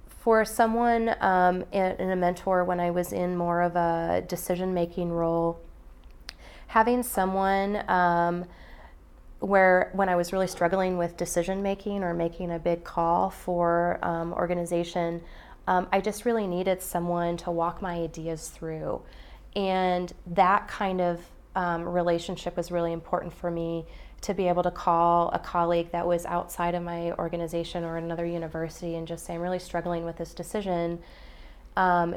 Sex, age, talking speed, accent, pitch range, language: female, 20-39, 155 wpm, American, 165-180 Hz, English